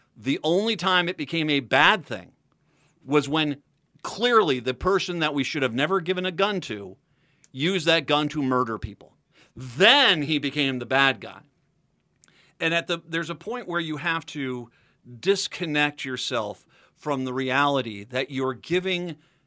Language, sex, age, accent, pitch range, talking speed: English, male, 50-69, American, 120-150 Hz, 160 wpm